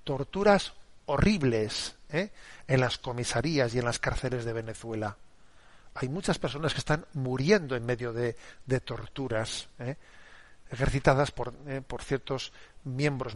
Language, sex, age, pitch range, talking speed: Spanish, male, 40-59, 120-140 Hz, 135 wpm